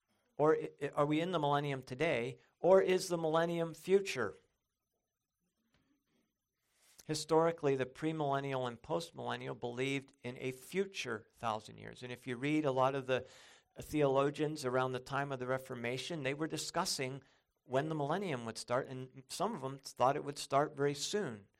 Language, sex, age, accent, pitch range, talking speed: English, male, 50-69, American, 120-145 Hz, 165 wpm